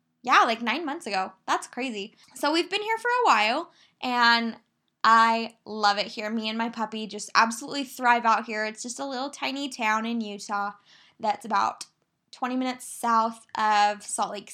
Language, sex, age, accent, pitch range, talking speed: English, female, 10-29, American, 210-265 Hz, 180 wpm